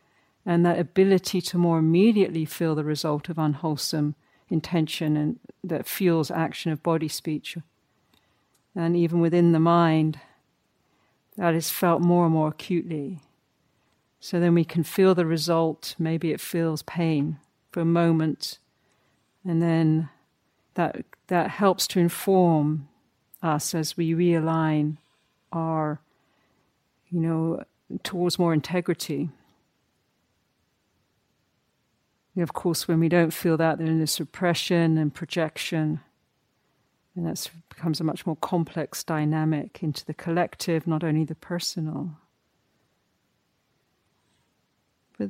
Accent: British